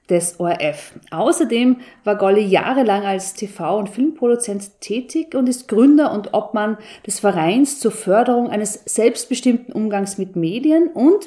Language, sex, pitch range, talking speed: German, female, 205-270 Hz, 140 wpm